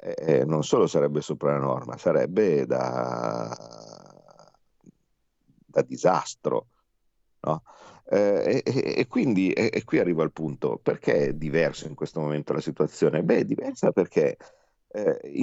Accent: native